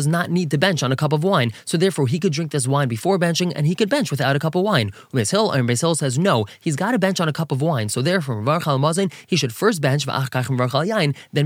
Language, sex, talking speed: English, male, 250 wpm